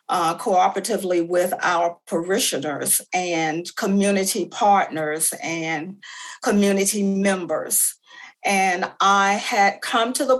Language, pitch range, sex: English, 185-215 Hz, female